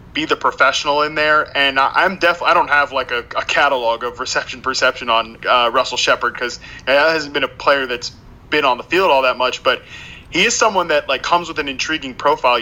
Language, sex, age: English, male, 20-39